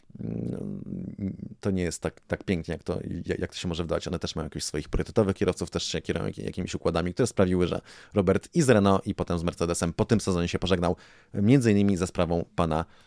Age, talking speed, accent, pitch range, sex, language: 30-49, 210 wpm, native, 85-100 Hz, male, Polish